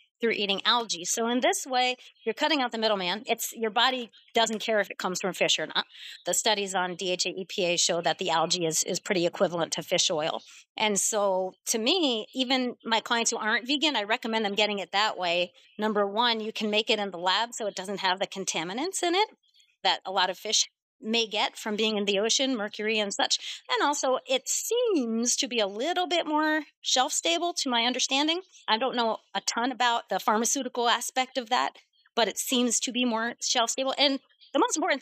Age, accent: 40-59, American